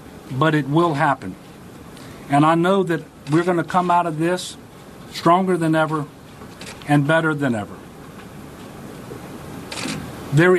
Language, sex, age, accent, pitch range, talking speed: English, male, 50-69, American, 140-170 Hz, 130 wpm